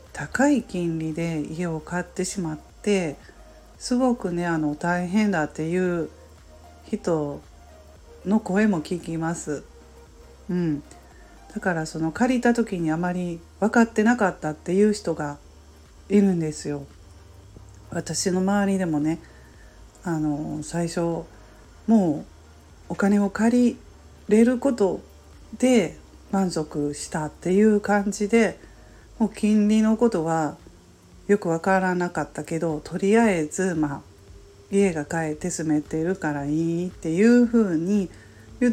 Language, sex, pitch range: Japanese, female, 145-200 Hz